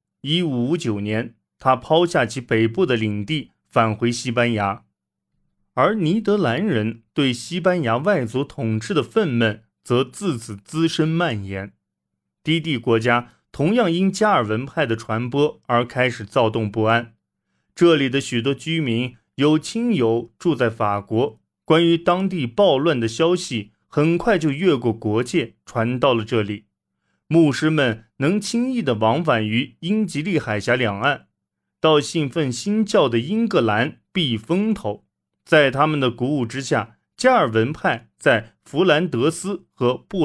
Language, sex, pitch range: Chinese, male, 110-165 Hz